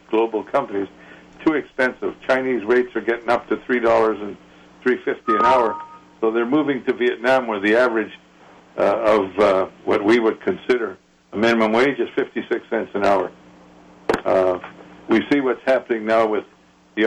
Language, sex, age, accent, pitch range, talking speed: English, male, 60-79, American, 100-125 Hz, 160 wpm